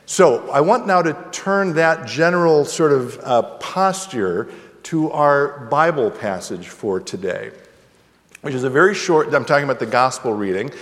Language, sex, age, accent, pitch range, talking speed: English, male, 50-69, American, 135-165 Hz, 160 wpm